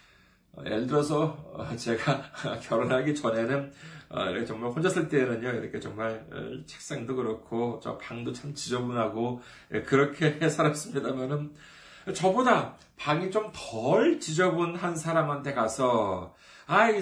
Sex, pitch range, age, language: male, 130-200 Hz, 40-59, Korean